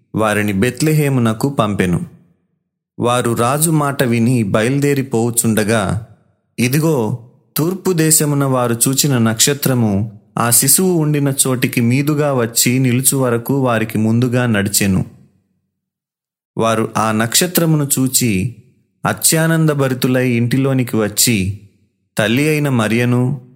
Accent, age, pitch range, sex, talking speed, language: native, 30-49, 110-140 Hz, male, 85 wpm, Telugu